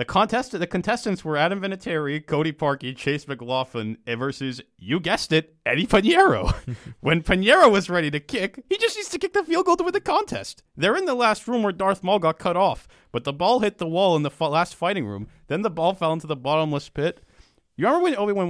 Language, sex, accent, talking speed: English, male, American, 225 wpm